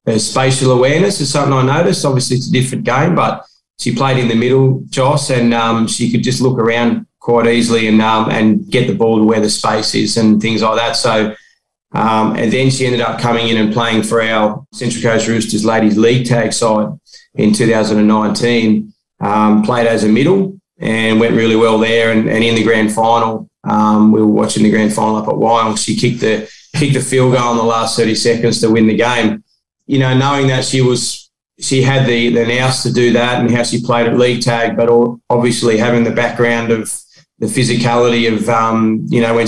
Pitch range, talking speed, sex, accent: 110-125 Hz, 215 wpm, male, Australian